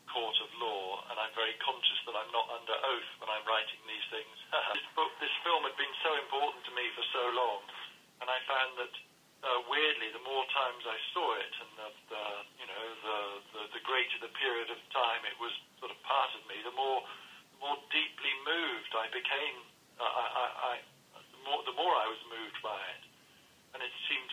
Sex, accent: male, British